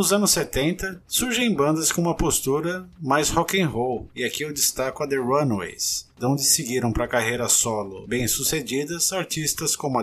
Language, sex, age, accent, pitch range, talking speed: Portuguese, male, 50-69, Brazilian, 120-170 Hz, 160 wpm